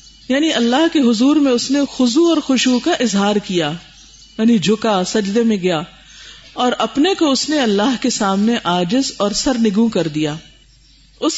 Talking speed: 170 wpm